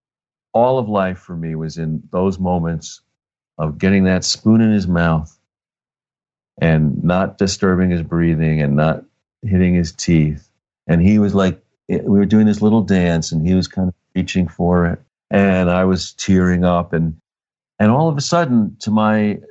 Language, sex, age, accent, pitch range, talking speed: English, male, 50-69, American, 90-110 Hz, 175 wpm